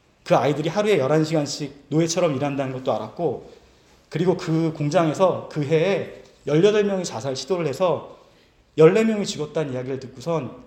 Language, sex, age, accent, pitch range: Korean, male, 40-59, native, 135-200 Hz